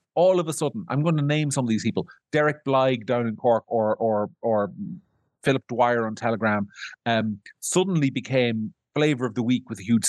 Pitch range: 120-190 Hz